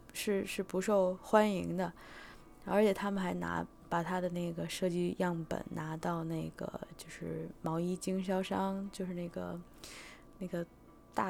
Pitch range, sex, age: 170-195 Hz, female, 20-39